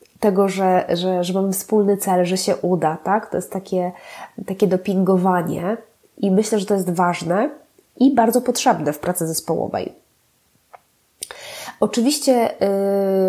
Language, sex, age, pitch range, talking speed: Polish, female, 20-39, 185-235 Hz, 130 wpm